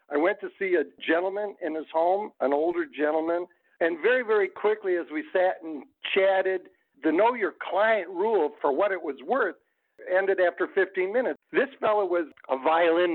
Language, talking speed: English, 185 wpm